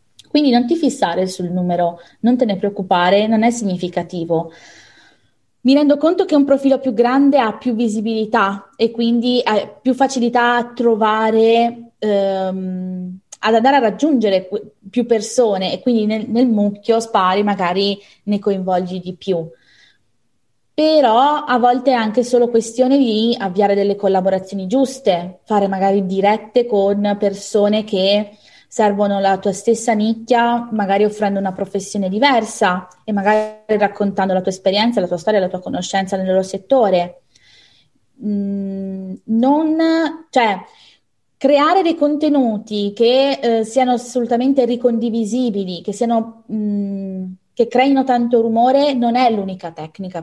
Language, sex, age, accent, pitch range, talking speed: English, female, 20-39, Italian, 195-245 Hz, 135 wpm